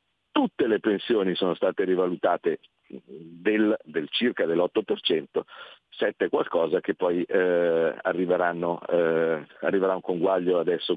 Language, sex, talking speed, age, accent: Italian, male, 110 wpm, 50-69, native